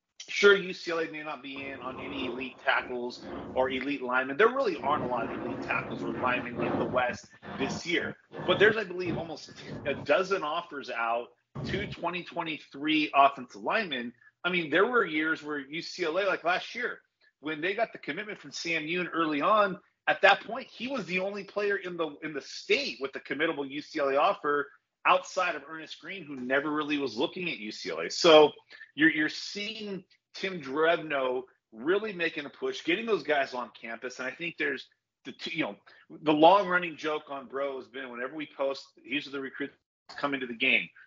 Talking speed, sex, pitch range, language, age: 190 wpm, male, 135-180 Hz, English, 30-49